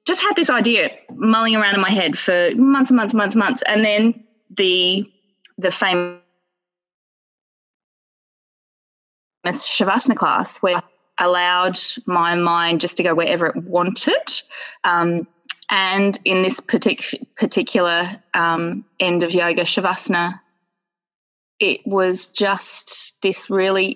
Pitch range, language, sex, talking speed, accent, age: 175-220 Hz, English, female, 130 wpm, Australian, 20-39